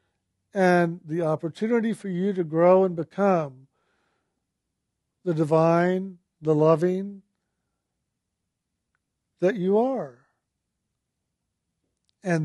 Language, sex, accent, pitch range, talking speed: English, male, American, 165-210 Hz, 80 wpm